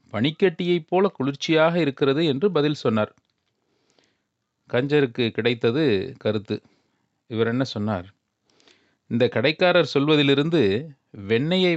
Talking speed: 85 wpm